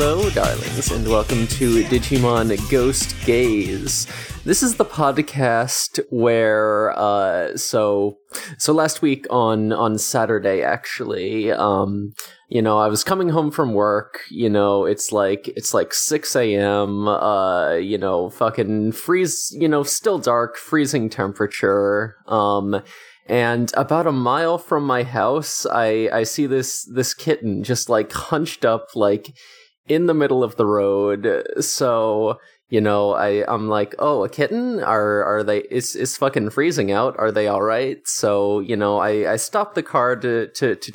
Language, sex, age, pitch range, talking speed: English, male, 20-39, 105-140 Hz, 155 wpm